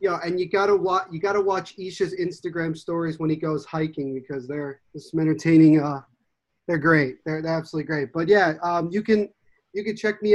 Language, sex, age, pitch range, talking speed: English, male, 30-49, 160-185 Hz, 205 wpm